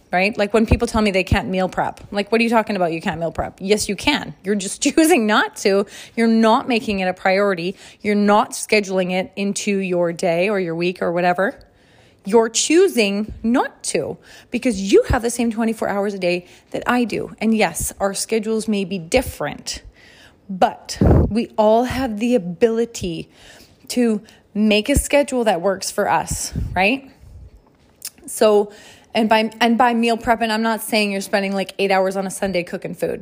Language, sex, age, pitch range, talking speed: English, female, 30-49, 195-235 Hz, 190 wpm